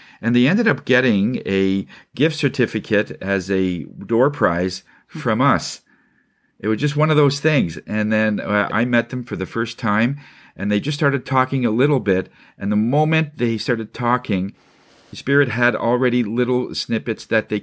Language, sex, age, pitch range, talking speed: English, male, 50-69, 100-140 Hz, 175 wpm